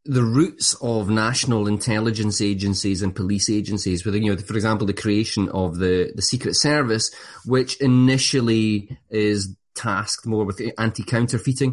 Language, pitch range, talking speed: English, 95-125 Hz, 150 wpm